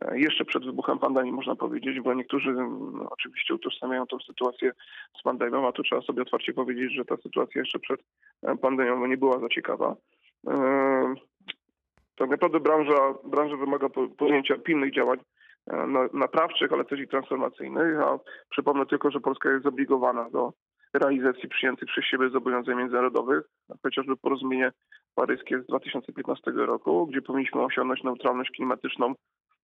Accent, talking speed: native, 150 wpm